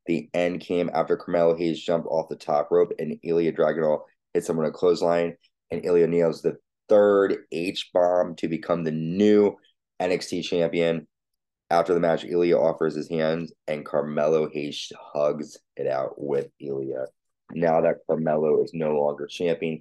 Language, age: English, 20-39